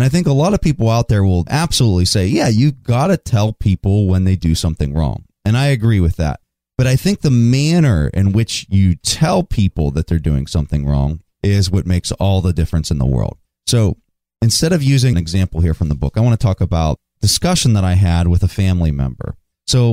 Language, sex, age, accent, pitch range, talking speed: English, male, 30-49, American, 85-120 Hz, 230 wpm